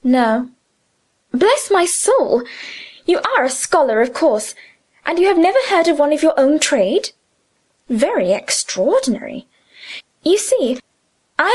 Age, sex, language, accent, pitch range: 20-39, female, Japanese, British, 235-360 Hz